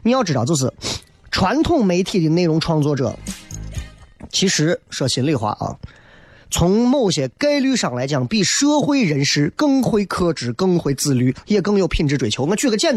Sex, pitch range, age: male, 140-205 Hz, 30-49